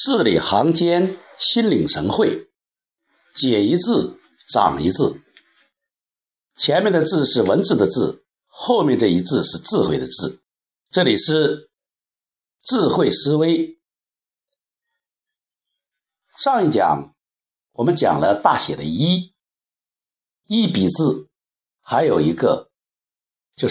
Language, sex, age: Chinese, male, 60-79